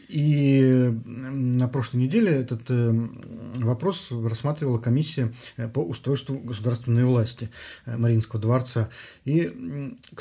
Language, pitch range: Russian, 115-125 Hz